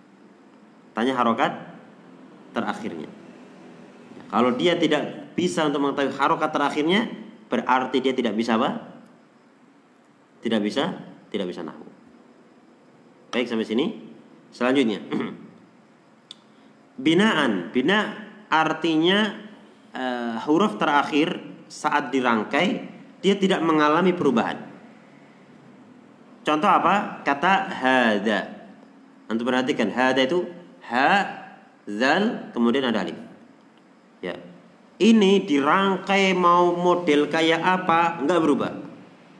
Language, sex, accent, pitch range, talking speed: Indonesian, male, native, 130-180 Hz, 90 wpm